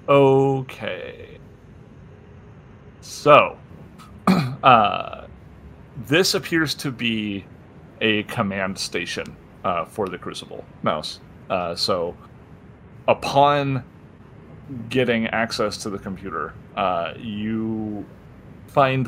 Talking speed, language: 80 wpm, English